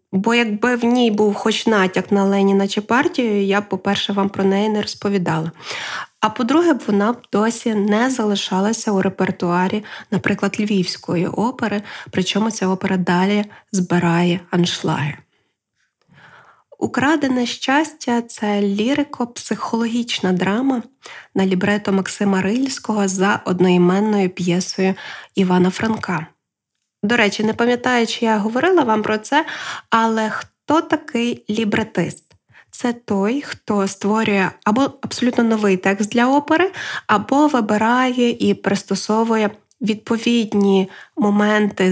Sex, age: female, 20-39